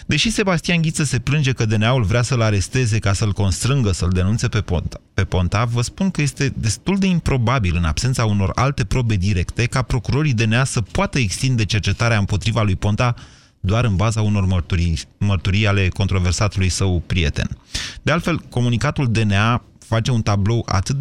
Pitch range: 100-130 Hz